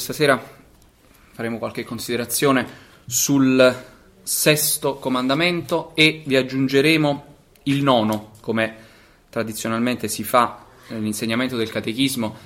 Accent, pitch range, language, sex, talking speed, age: native, 115-140 Hz, Italian, male, 95 wpm, 20-39